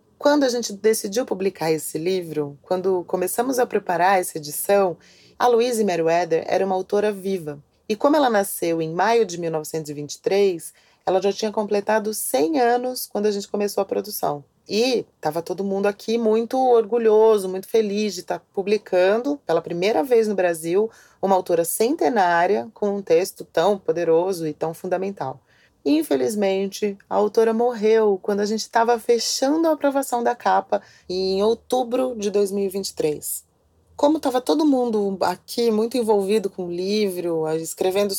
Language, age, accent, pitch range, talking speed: Portuguese, 30-49, Brazilian, 175-220 Hz, 150 wpm